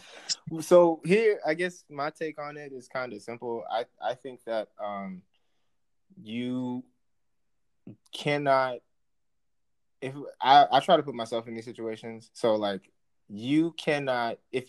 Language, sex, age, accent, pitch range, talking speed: English, male, 20-39, American, 105-135 Hz, 140 wpm